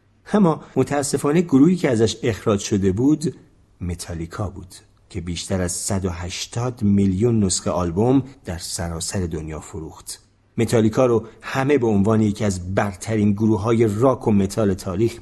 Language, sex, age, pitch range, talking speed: Persian, male, 40-59, 95-125 Hz, 140 wpm